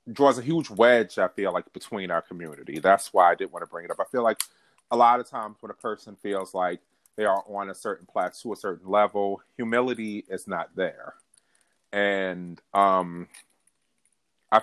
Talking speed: 195 wpm